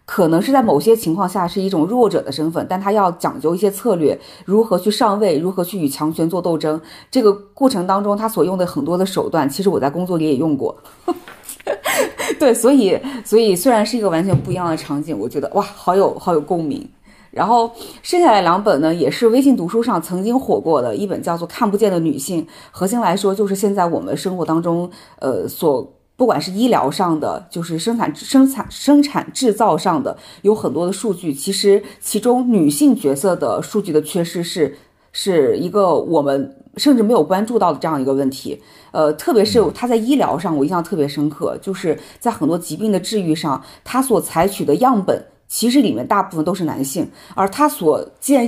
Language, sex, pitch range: Chinese, female, 165-230 Hz